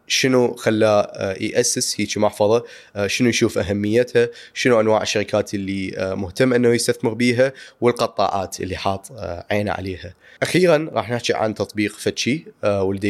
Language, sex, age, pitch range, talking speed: Arabic, male, 20-39, 100-115 Hz, 130 wpm